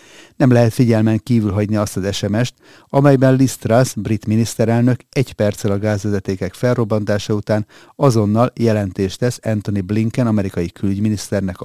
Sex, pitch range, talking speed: male, 100-125 Hz, 135 wpm